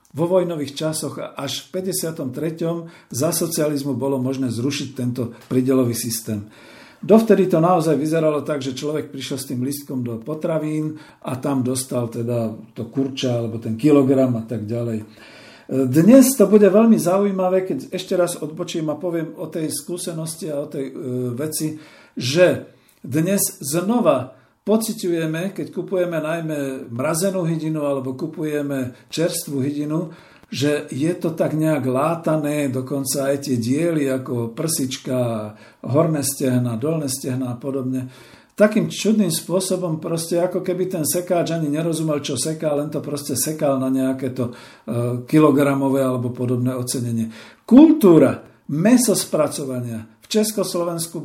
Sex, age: male, 50-69